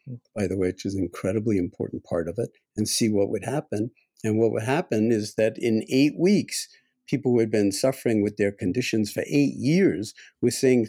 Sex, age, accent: male, 50-69, American